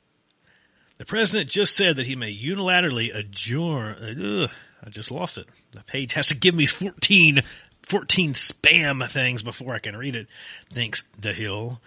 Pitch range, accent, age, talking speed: 115-160 Hz, American, 40-59, 155 wpm